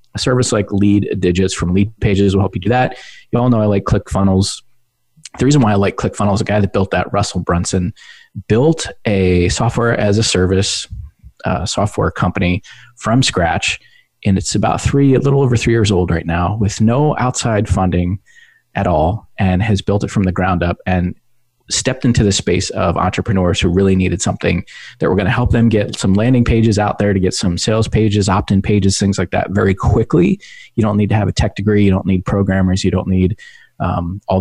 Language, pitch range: English, 95-115 Hz